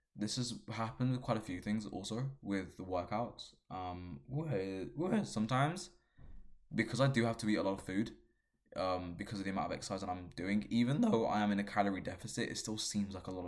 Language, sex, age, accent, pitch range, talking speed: English, male, 20-39, British, 95-120 Hz, 215 wpm